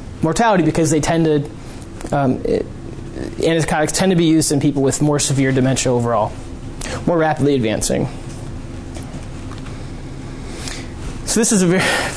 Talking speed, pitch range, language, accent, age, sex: 130 wpm, 140-180 Hz, English, American, 20-39, male